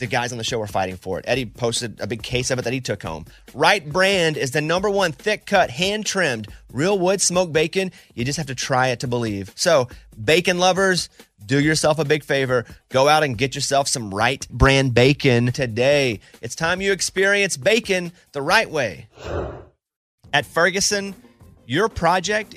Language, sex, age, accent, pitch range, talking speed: English, male, 30-49, American, 120-160 Hz, 185 wpm